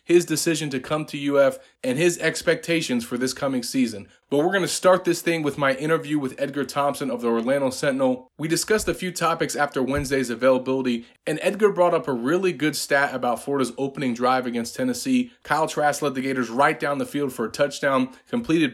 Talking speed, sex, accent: 210 wpm, male, American